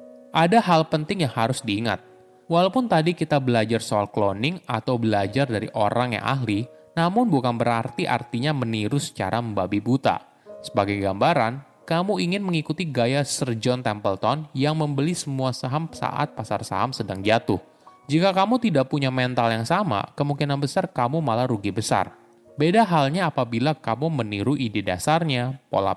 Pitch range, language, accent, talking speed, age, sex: 110-155 Hz, Indonesian, native, 150 wpm, 20-39, male